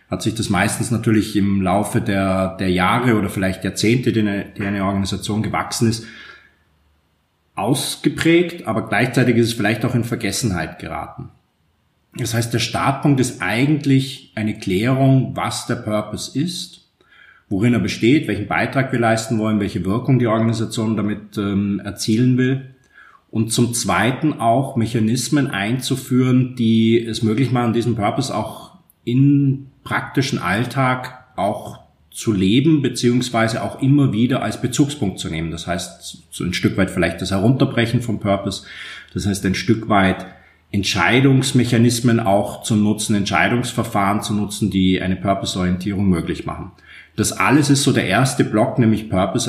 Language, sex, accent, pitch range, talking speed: German, male, German, 100-125 Hz, 145 wpm